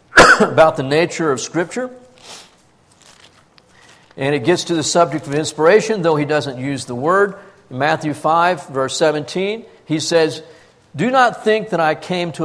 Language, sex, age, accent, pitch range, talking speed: English, male, 50-69, American, 160-225 Hz, 155 wpm